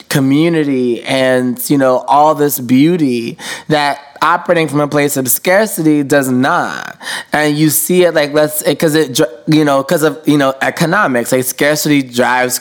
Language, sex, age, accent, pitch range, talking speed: English, male, 20-39, American, 125-155 Hz, 160 wpm